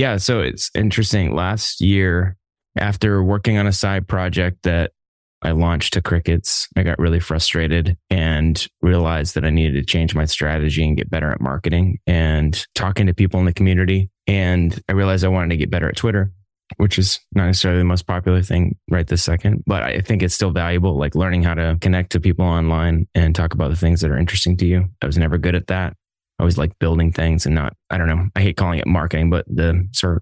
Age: 20-39